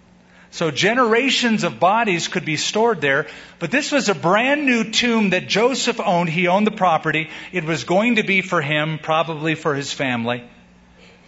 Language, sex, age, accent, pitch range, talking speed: English, male, 50-69, American, 155-195 Hz, 175 wpm